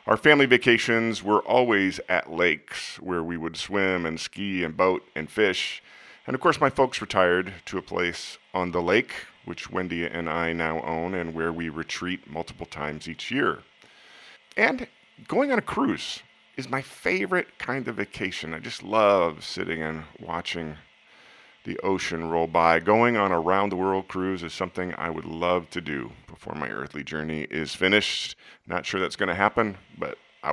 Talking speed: 175 wpm